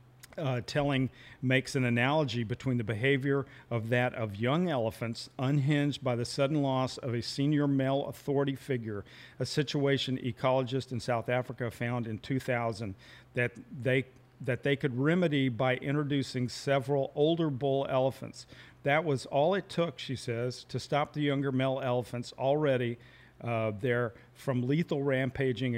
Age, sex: 50-69, male